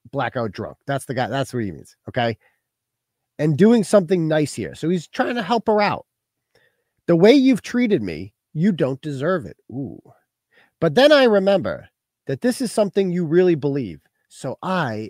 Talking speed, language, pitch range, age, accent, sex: 180 wpm, English, 135-205 Hz, 40-59, American, male